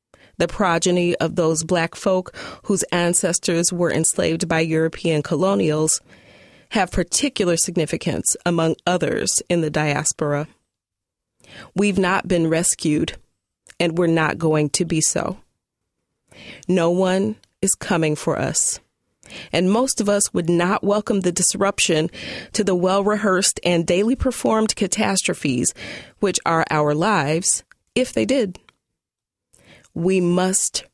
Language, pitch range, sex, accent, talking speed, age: English, 165-200 Hz, female, American, 120 wpm, 30-49